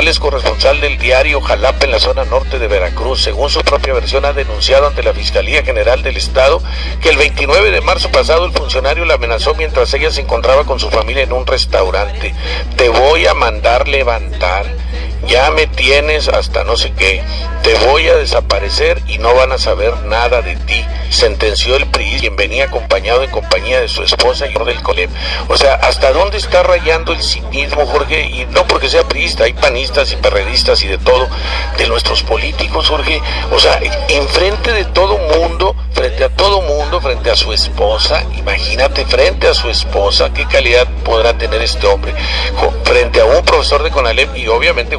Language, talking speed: English, 185 wpm